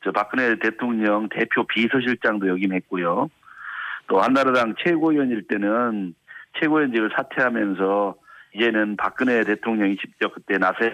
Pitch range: 110-150 Hz